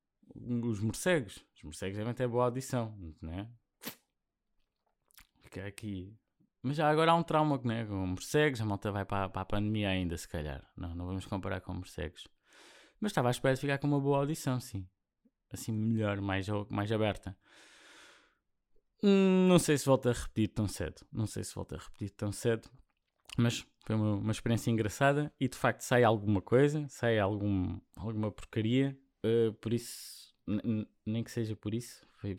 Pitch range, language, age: 95-125 Hz, Portuguese, 20-39